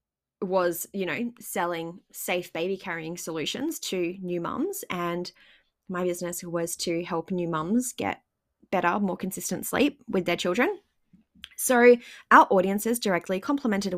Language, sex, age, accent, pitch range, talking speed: English, female, 20-39, Australian, 170-205 Hz, 135 wpm